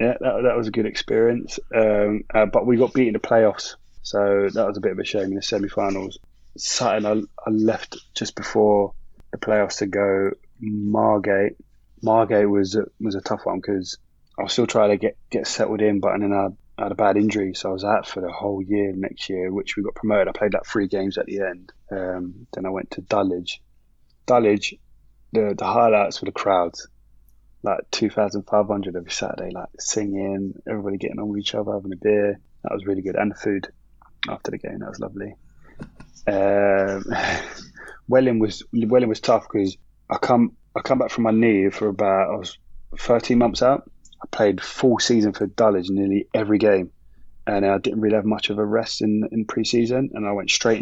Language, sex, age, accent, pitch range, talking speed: English, male, 20-39, British, 95-110 Hz, 205 wpm